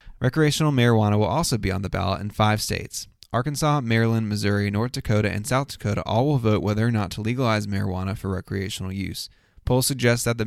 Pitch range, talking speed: 100-120 Hz, 200 wpm